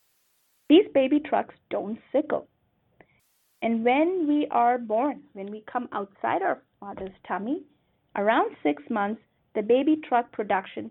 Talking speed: 130 wpm